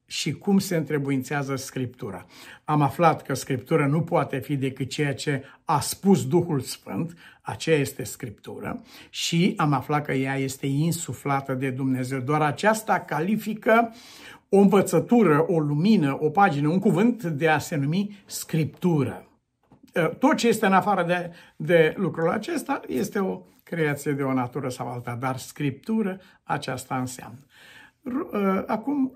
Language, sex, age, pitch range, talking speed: Romanian, male, 60-79, 135-180 Hz, 140 wpm